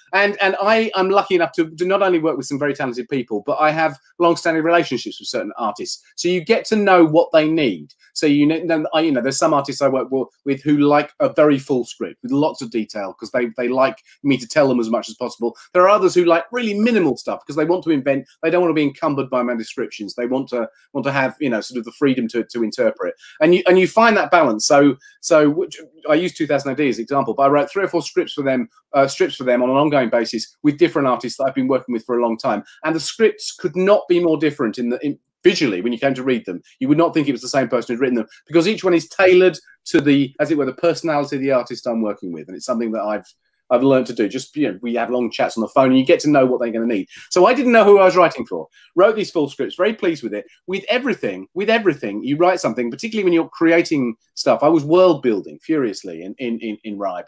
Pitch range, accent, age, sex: 125-180 Hz, British, 30-49, male